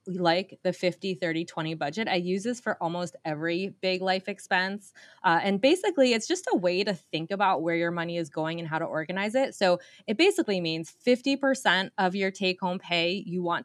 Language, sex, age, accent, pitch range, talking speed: English, female, 20-39, American, 170-220 Hz, 195 wpm